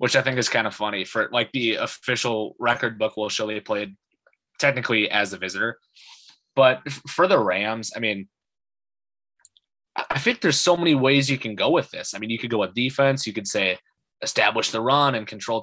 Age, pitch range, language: 20-39, 110-135 Hz, English